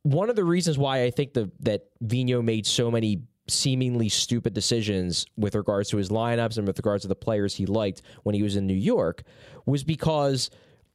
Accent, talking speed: American, 205 wpm